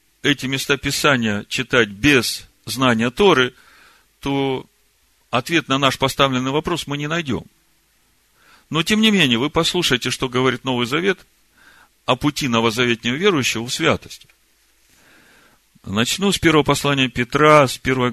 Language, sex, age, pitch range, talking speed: Russian, male, 50-69, 115-145 Hz, 130 wpm